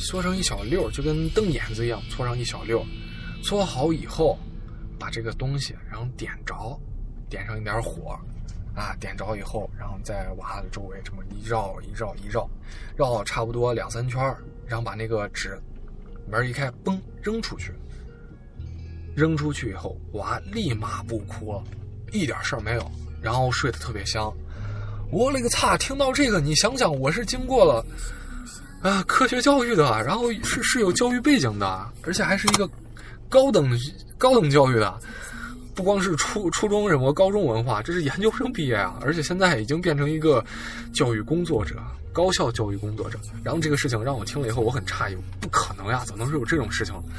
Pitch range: 100-150 Hz